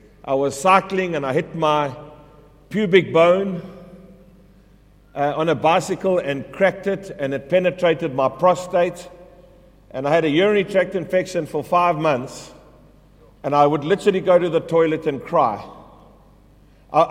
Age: 50-69